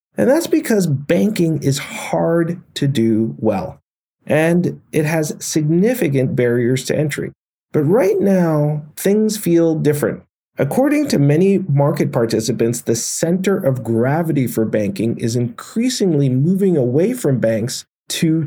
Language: English